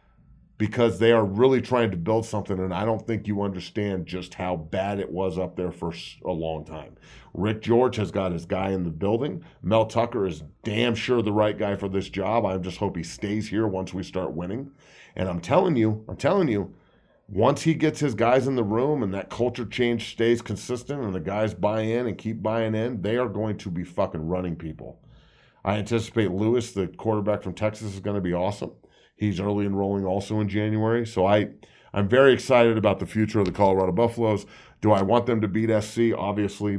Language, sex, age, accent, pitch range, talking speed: English, male, 40-59, American, 95-115 Hz, 215 wpm